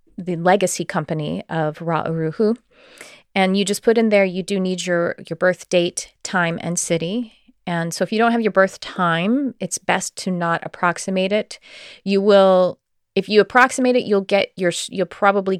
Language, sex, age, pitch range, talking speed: English, female, 30-49, 170-205 Hz, 180 wpm